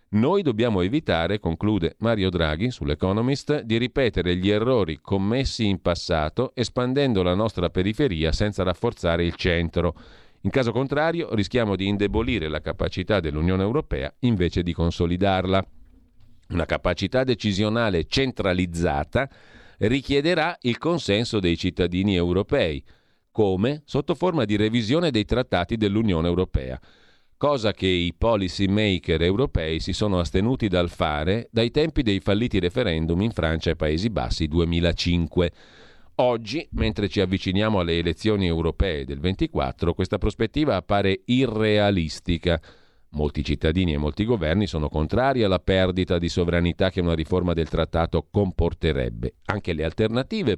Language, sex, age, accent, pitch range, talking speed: Italian, male, 40-59, native, 85-110 Hz, 130 wpm